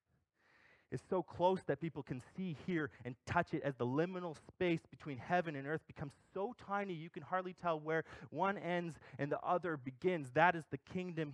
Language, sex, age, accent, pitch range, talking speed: English, male, 20-39, American, 120-165 Hz, 195 wpm